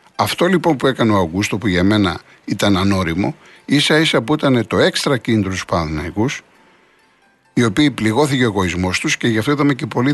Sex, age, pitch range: male, 60-79, 95-130 Hz